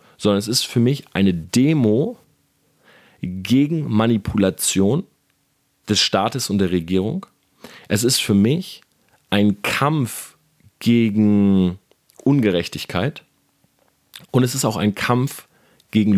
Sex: male